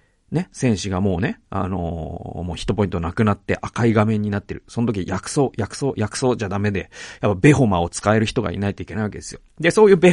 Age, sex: 40-59, male